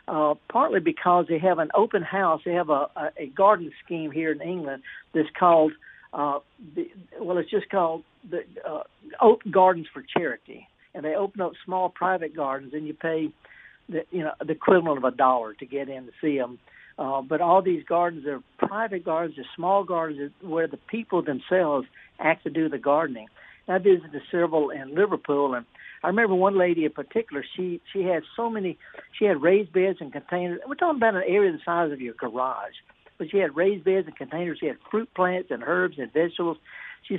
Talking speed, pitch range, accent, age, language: 205 wpm, 150-195 Hz, American, 60-79, English